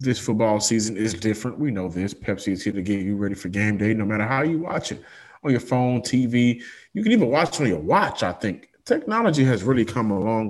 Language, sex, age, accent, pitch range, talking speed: English, male, 20-39, American, 105-125 Hz, 245 wpm